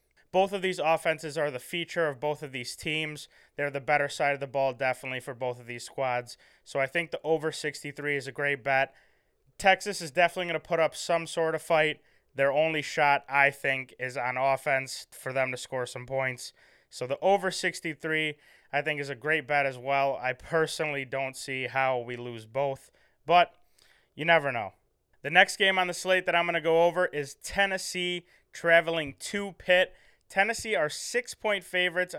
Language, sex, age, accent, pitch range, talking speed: English, male, 20-39, American, 135-175 Hz, 195 wpm